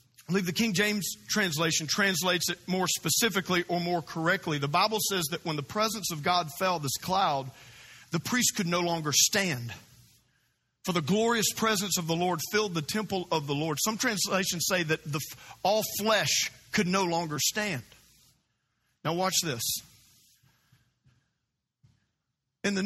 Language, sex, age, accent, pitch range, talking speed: English, male, 50-69, American, 140-190 Hz, 160 wpm